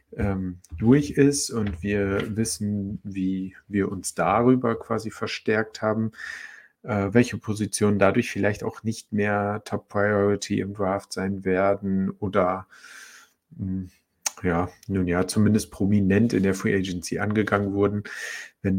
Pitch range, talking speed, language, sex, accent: 95-110 Hz, 120 wpm, German, male, German